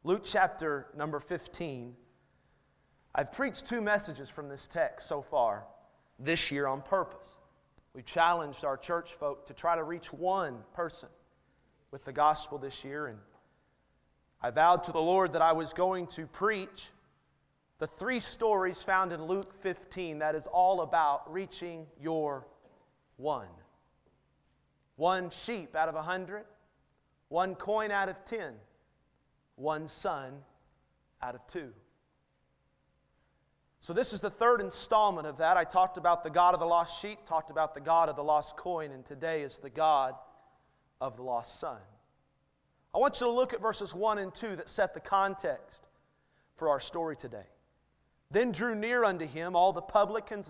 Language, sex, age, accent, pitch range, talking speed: English, male, 30-49, American, 150-195 Hz, 160 wpm